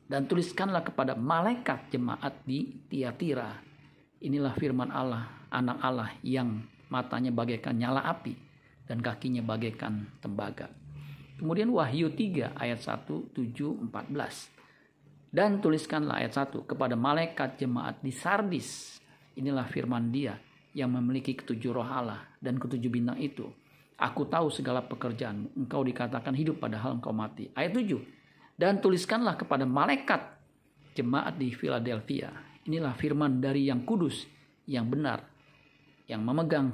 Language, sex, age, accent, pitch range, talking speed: Indonesian, male, 50-69, native, 125-150 Hz, 125 wpm